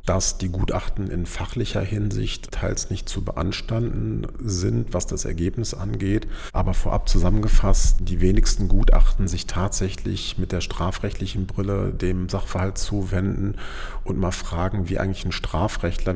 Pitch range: 90-105 Hz